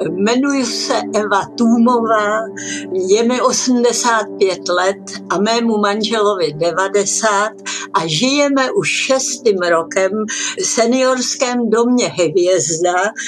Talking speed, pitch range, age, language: 95 wpm, 200-240 Hz, 60-79, Czech